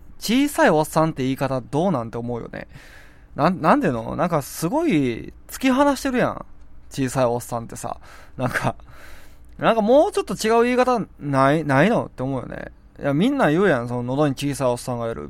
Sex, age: male, 20-39